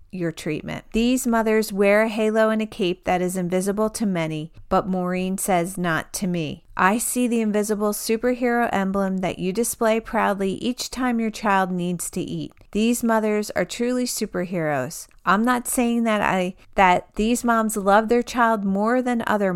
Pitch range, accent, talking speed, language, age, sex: 180-225 Hz, American, 175 wpm, English, 40-59, female